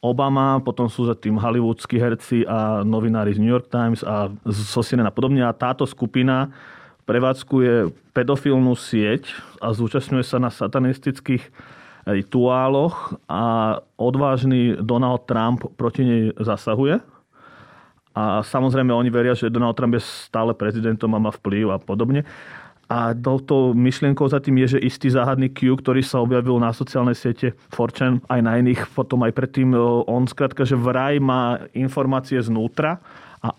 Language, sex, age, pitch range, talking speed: Slovak, male, 30-49, 110-130 Hz, 145 wpm